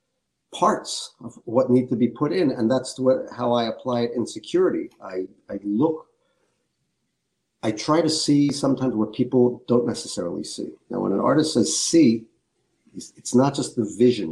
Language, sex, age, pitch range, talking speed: English, male, 50-69, 100-125 Hz, 175 wpm